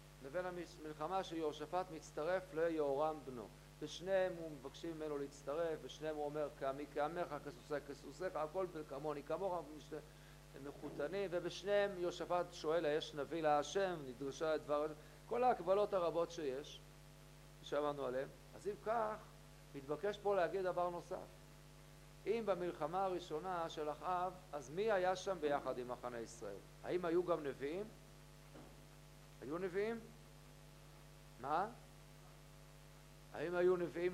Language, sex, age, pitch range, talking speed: Hebrew, male, 50-69, 150-195 Hz, 125 wpm